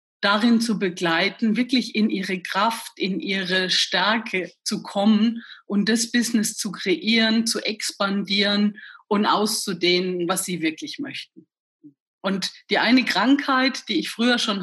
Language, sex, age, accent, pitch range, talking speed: German, female, 30-49, German, 200-235 Hz, 135 wpm